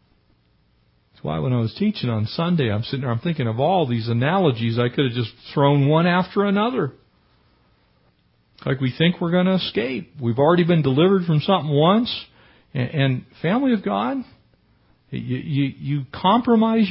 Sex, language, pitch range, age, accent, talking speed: male, English, 115-185 Hz, 50-69, American, 165 wpm